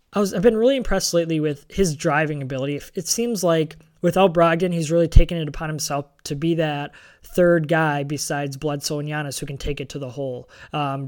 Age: 20-39